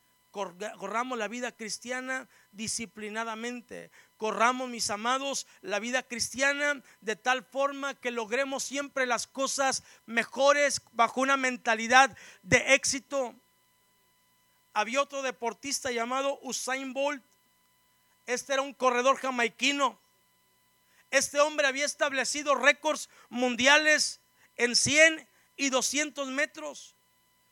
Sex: male